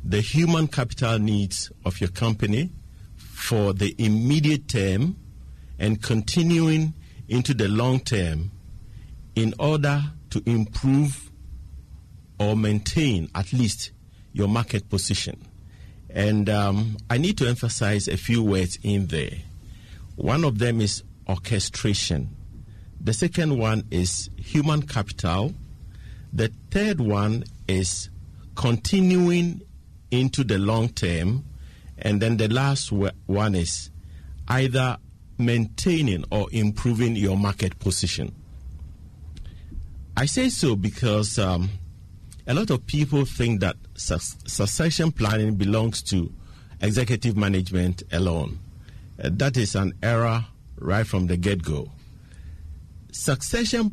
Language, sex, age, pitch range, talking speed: English, male, 50-69, 95-120 Hz, 110 wpm